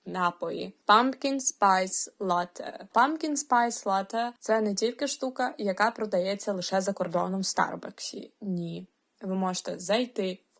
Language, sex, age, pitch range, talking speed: Ukrainian, female, 20-39, 180-220 Hz, 130 wpm